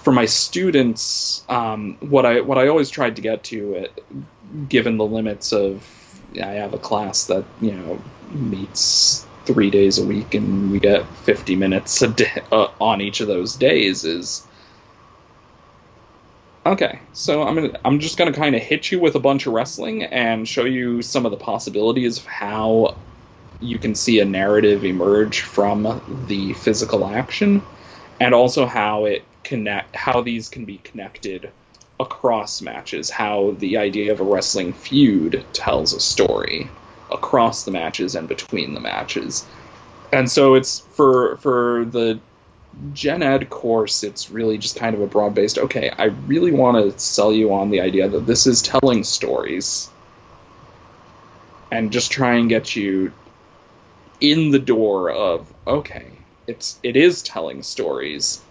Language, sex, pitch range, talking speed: English, male, 105-135 Hz, 160 wpm